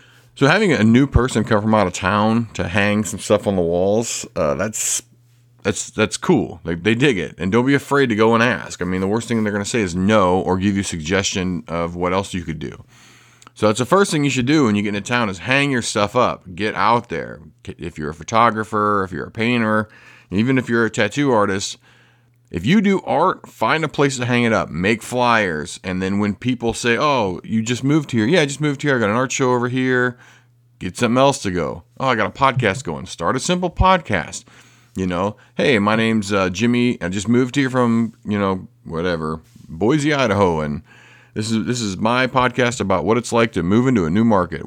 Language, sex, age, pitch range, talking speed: English, male, 30-49, 100-125 Hz, 235 wpm